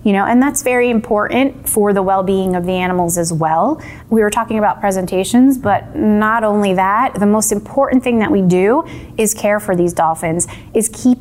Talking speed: 200 wpm